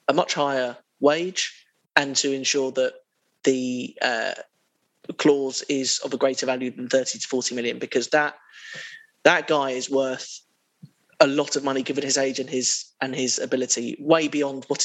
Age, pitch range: 20-39, 130-145 Hz